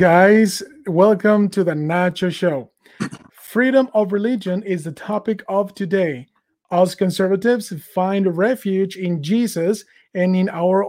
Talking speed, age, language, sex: 125 wpm, 30-49, English, male